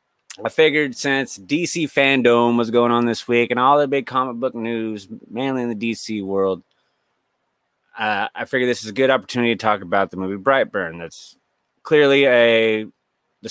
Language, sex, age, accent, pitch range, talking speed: English, male, 30-49, American, 105-140 Hz, 180 wpm